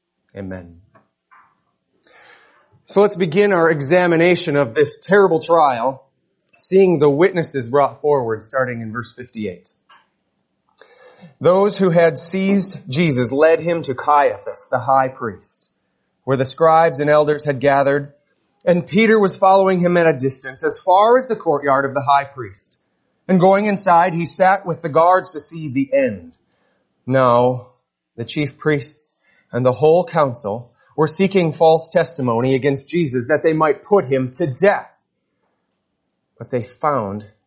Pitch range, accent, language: 135-185 Hz, American, English